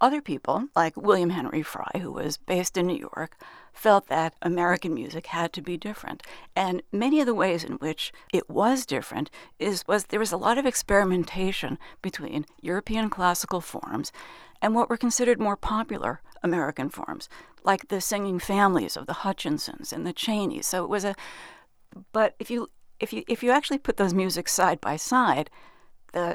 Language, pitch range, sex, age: English, 175-225 Hz, female, 60-79